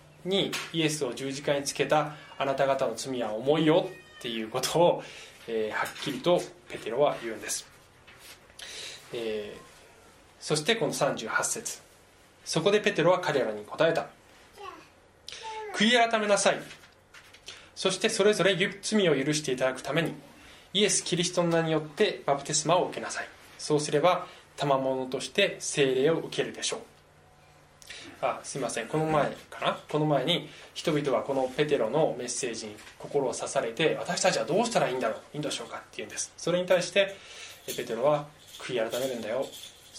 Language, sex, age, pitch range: Japanese, male, 20-39, 135-195 Hz